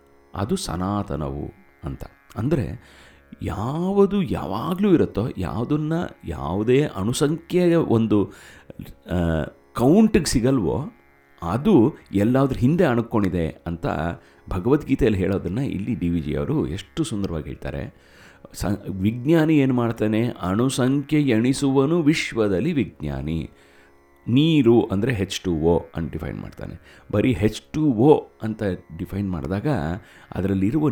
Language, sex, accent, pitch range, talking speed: Kannada, male, native, 85-130 Hz, 90 wpm